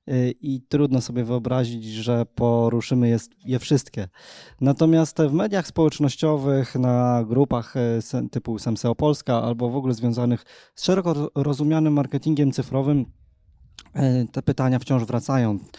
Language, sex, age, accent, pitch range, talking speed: Polish, male, 20-39, native, 120-145 Hz, 115 wpm